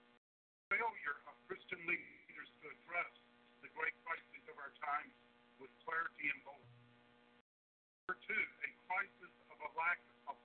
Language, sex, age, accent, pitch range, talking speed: English, male, 50-69, American, 120-175 Hz, 140 wpm